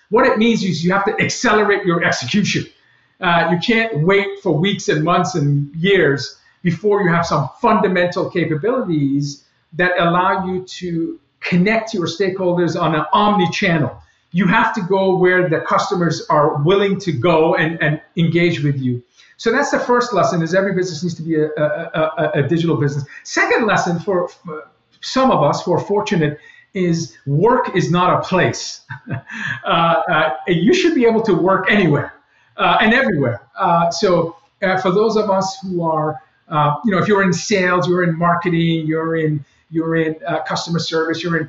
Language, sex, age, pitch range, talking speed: Finnish, male, 50-69, 160-195 Hz, 180 wpm